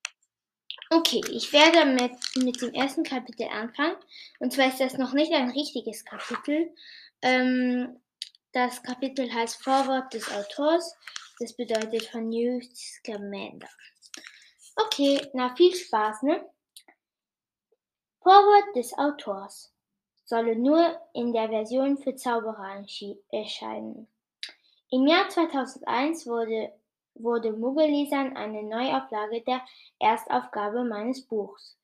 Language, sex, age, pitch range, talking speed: German, female, 10-29, 225-290 Hz, 110 wpm